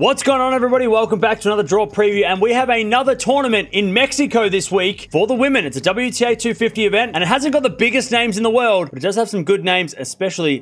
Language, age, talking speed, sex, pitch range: English, 20-39, 255 wpm, male, 185-235 Hz